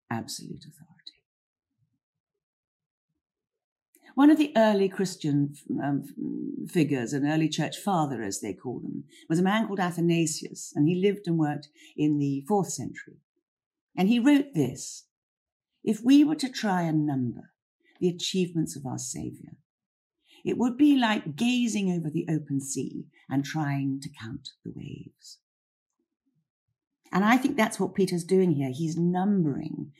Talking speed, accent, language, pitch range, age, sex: 145 wpm, British, English, 145-200 Hz, 50-69, female